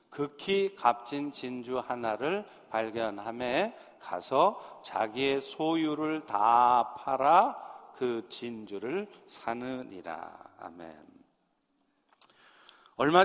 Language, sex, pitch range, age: Korean, male, 130-180 Hz, 50-69